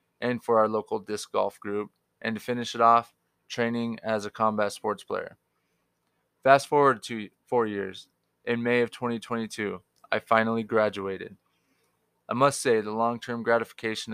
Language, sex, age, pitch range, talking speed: English, male, 20-39, 105-120 Hz, 155 wpm